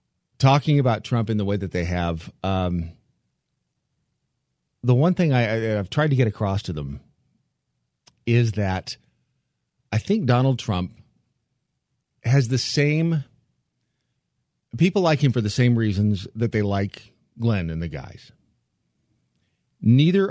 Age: 40-59